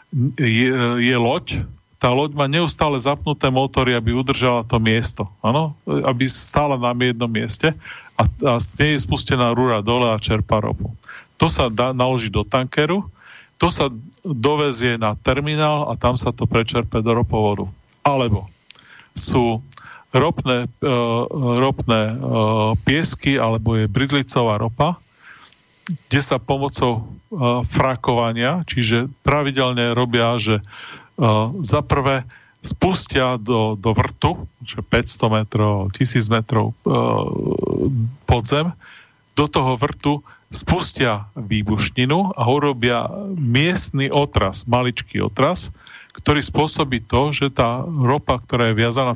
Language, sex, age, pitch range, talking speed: Slovak, male, 40-59, 115-140 Hz, 120 wpm